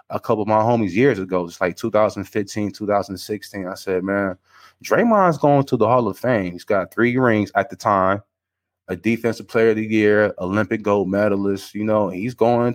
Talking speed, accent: 195 wpm, American